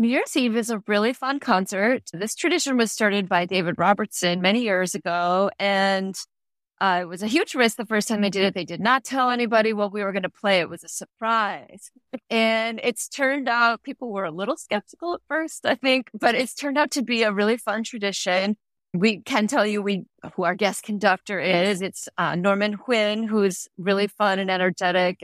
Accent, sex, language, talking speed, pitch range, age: American, female, English, 210 wpm, 185-235 Hz, 30-49